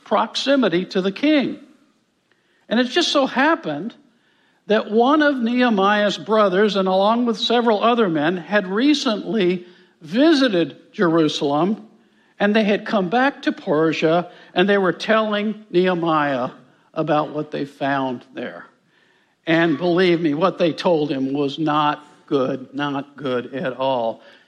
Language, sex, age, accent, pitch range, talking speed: English, male, 60-79, American, 155-230 Hz, 135 wpm